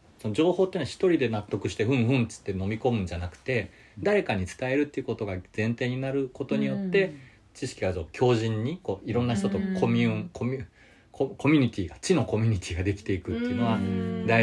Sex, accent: male, native